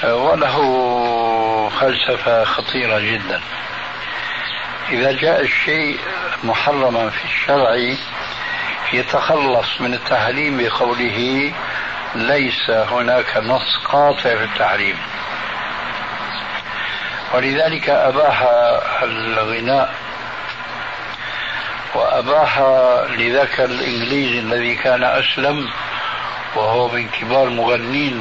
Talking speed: 70 wpm